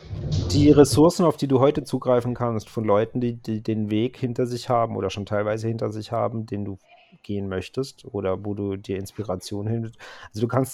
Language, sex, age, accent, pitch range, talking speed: German, male, 30-49, German, 105-125 Hz, 200 wpm